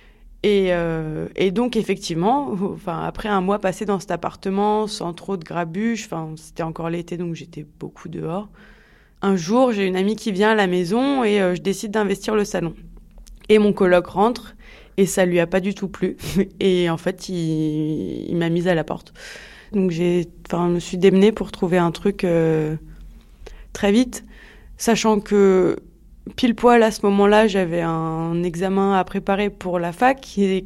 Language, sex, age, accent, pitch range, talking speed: French, female, 20-39, French, 175-205 Hz, 180 wpm